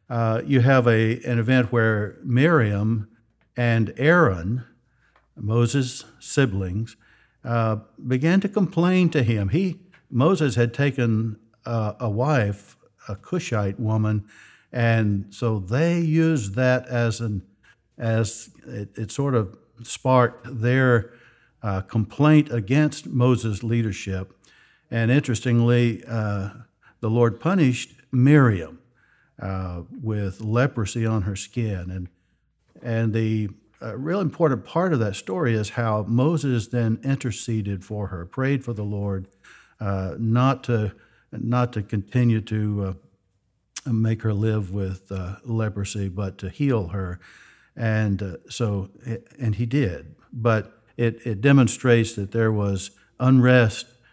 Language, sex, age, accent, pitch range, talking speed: English, male, 60-79, American, 105-125 Hz, 125 wpm